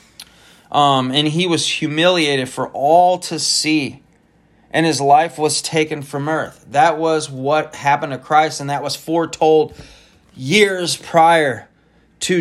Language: English